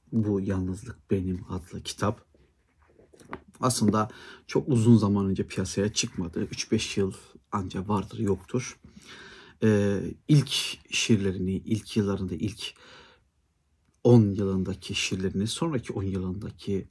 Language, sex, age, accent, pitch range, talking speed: Turkish, male, 60-79, native, 95-115 Hz, 105 wpm